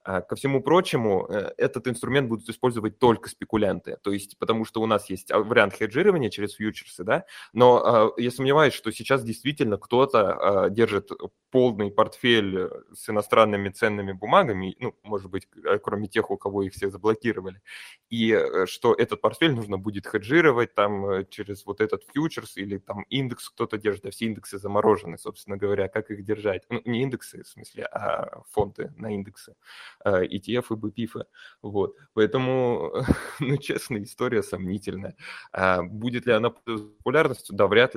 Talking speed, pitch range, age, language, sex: 150 wpm, 100-125 Hz, 20-39, Russian, male